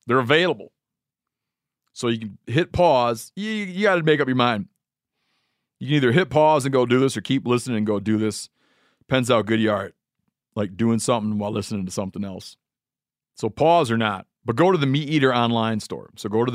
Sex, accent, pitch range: male, American, 110-140 Hz